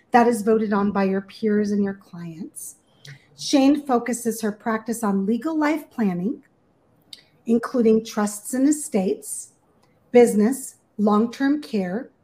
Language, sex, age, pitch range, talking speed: English, female, 40-59, 210-255 Hz, 125 wpm